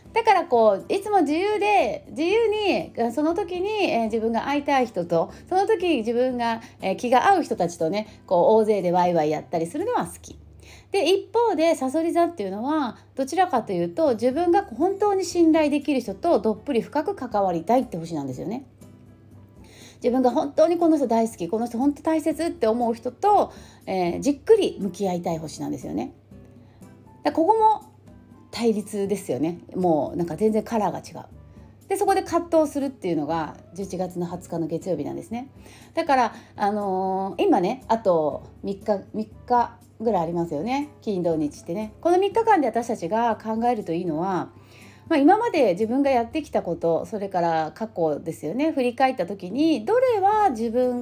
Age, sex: 30-49, female